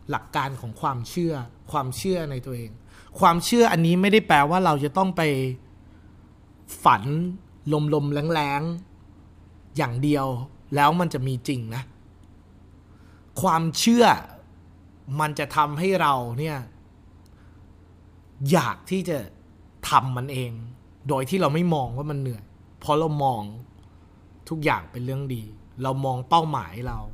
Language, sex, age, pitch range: Thai, male, 30-49, 100-155 Hz